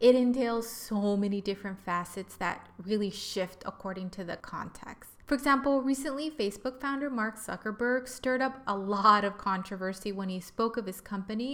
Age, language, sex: 20-39, English, female